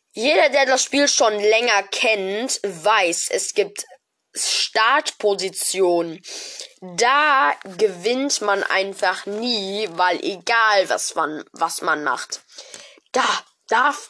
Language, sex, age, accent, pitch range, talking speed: German, female, 20-39, German, 180-270 Hz, 105 wpm